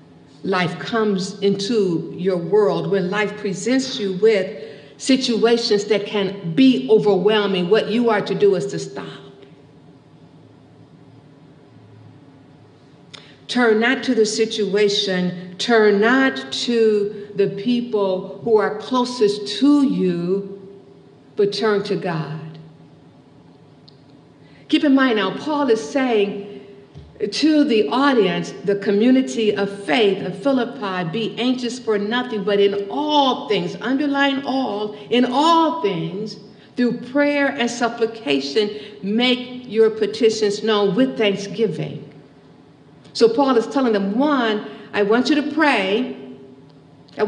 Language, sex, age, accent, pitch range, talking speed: English, female, 60-79, American, 165-235 Hz, 120 wpm